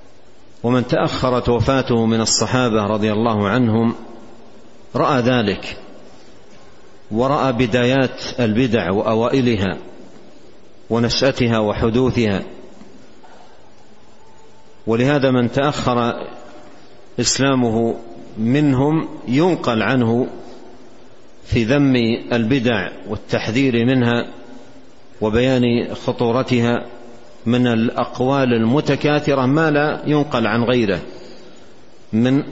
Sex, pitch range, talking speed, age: male, 115-130 Hz, 70 wpm, 50-69